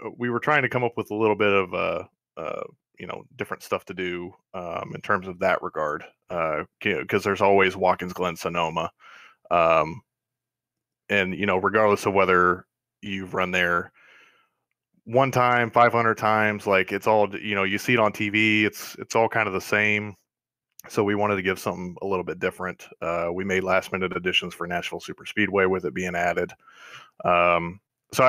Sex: male